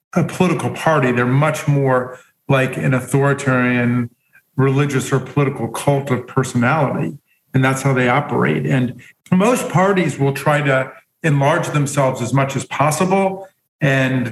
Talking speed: 140 wpm